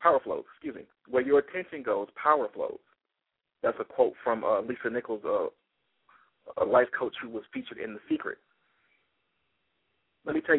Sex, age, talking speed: male, 50-69, 170 wpm